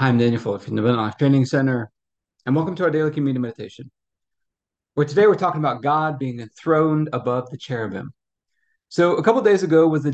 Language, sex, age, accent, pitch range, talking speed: English, male, 30-49, American, 125-155 Hz, 195 wpm